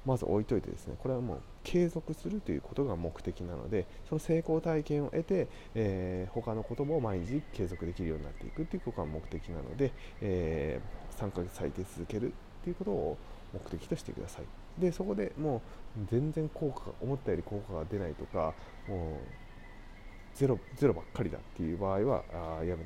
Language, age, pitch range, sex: Japanese, 20-39, 85-120 Hz, male